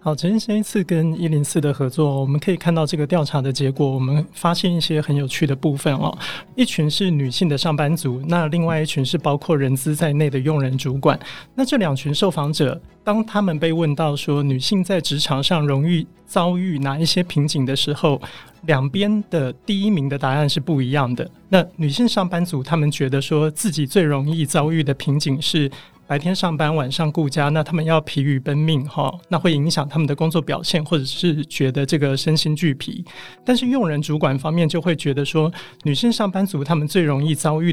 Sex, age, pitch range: male, 30-49, 145-175 Hz